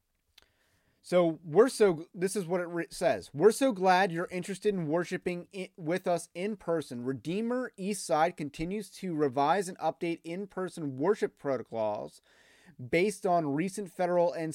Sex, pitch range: male, 145-185 Hz